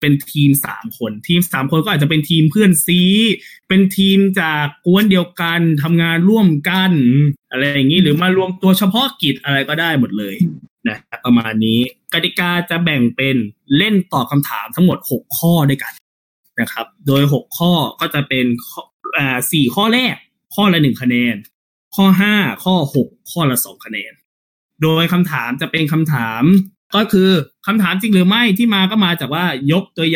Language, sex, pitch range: Thai, male, 135-190 Hz